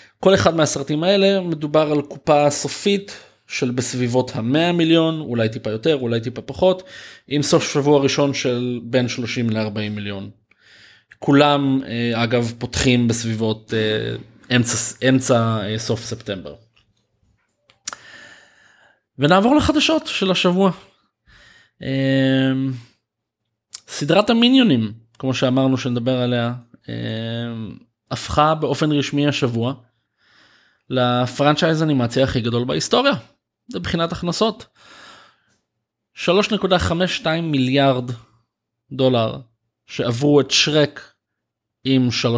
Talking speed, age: 90 wpm, 20-39